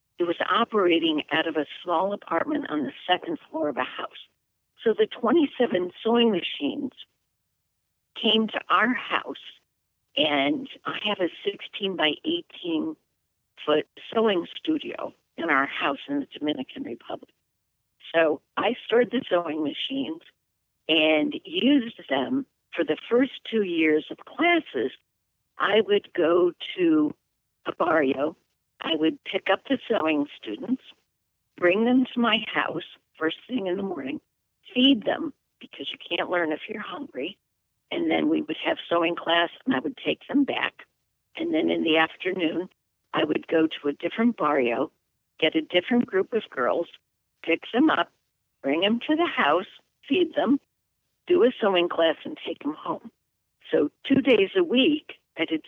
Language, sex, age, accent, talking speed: English, female, 50-69, American, 155 wpm